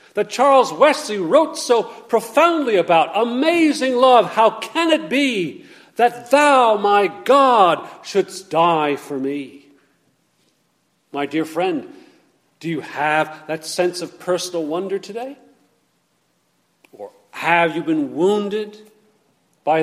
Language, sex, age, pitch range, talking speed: English, male, 50-69, 180-275 Hz, 120 wpm